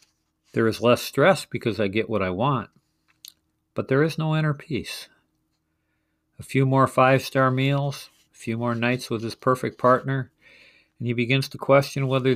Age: 50-69